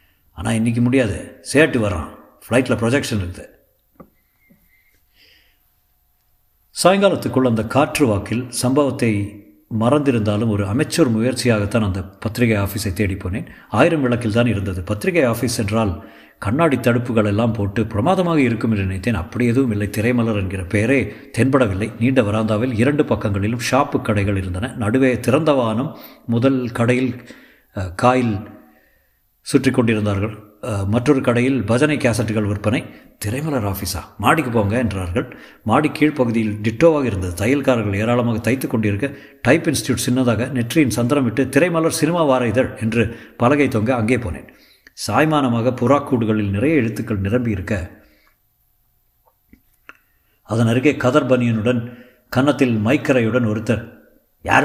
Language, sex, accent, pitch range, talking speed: Tamil, male, native, 105-130 Hz, 110 wpm